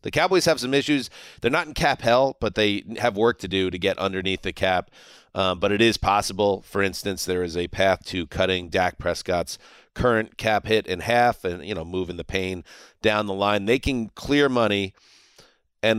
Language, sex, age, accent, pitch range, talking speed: English, male, 40-59, American, 95-130 Hz, 205 wpm